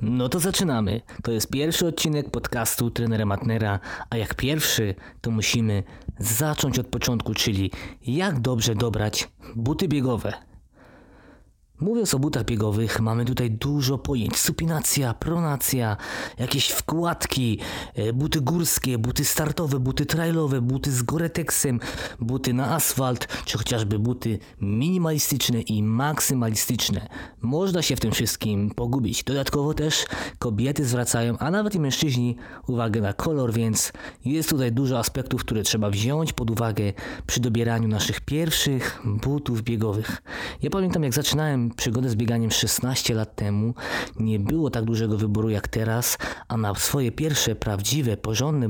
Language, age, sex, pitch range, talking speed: Polish, 20-39, male, 110-135 Hz, 135 wpm